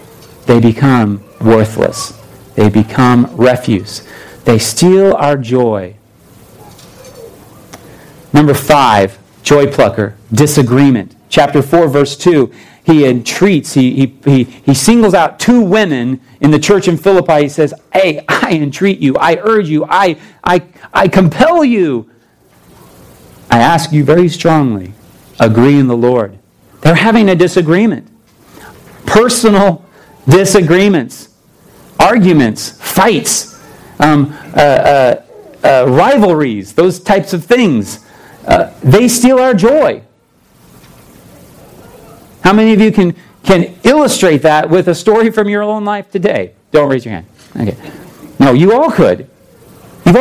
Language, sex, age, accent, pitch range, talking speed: English, male, 40-59, American, 130-195 Hz, 125 wpm